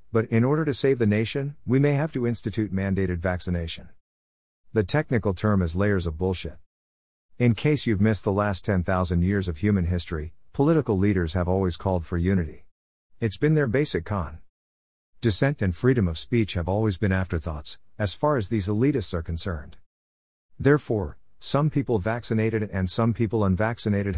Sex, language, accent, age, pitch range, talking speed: male, English, American, 50-69, 85-120 Hz, 170 wpm